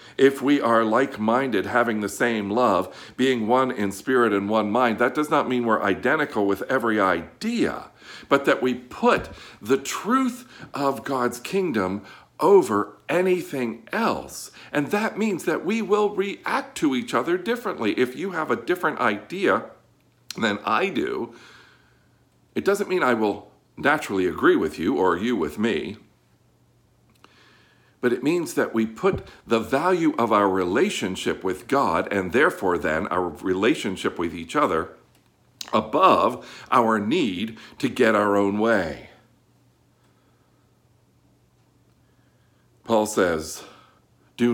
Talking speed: 135 wpm